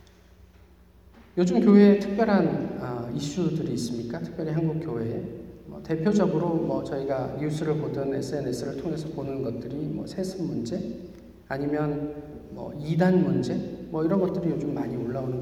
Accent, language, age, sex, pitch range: native, Korean, 40-59, male, 125-190 Hz